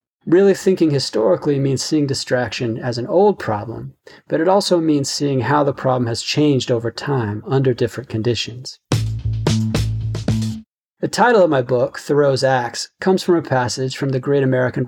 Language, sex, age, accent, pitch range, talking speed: English, male, 30-49, American, 115-150 Hz, 160 wpm